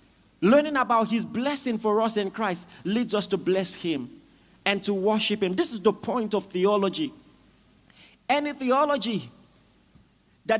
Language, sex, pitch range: English, male, 210-285 Hz